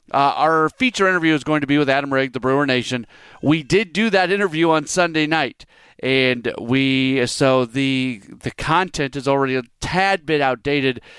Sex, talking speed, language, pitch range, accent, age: male, 180 wpm, English, 125-165 Hz, American, 40-59